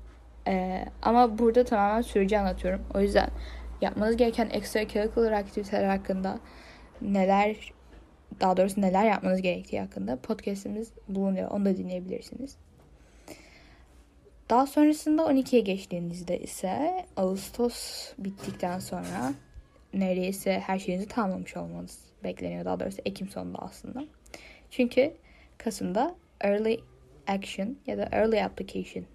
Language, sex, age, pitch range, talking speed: Turkish, female, 10-29, 185-245 Hz, 110 wpm